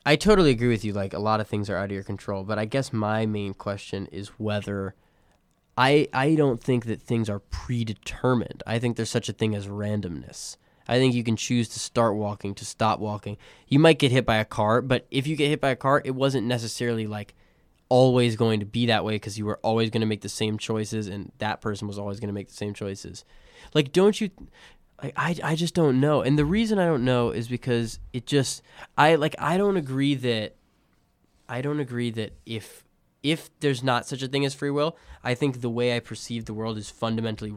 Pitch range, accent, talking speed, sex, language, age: 105-140 Hz, American, 230 wpm, male, English, 20-39